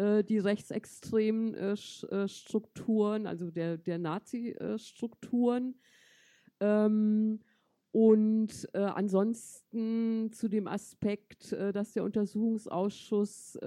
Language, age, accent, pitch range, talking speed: German, 50-69, German, 175-210 Hz, 65 wpm